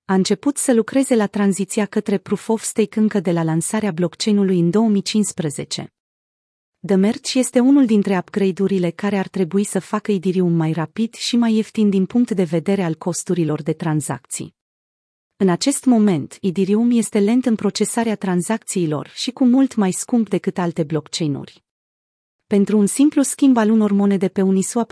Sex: female